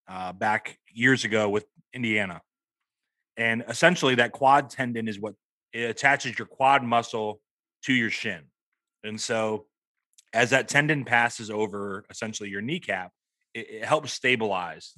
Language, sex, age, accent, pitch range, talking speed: English, male, 30-49, American, 105-130 Hz, 145 wpm